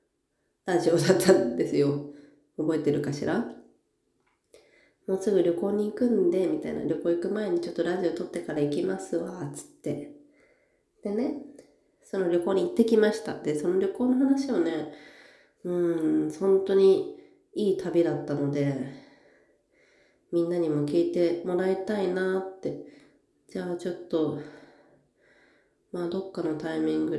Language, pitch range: Japanese, 155-220 Hz